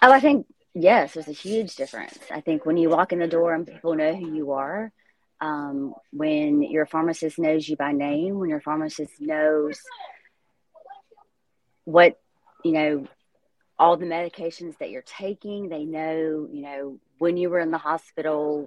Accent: American